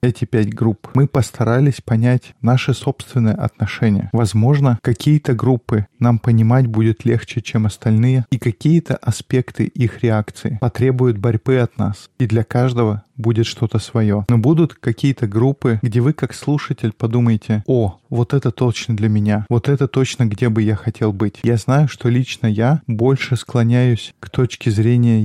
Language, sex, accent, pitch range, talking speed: Russian, male, native, 110-125 Hz, 155 wpm